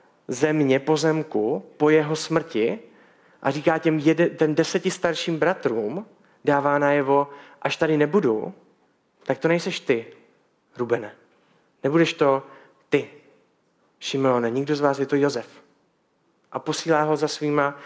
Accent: native